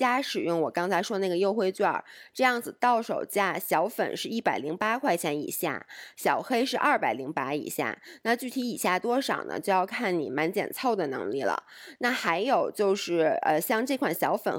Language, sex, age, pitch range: Chinese, female, 20-39, 175-235 Hz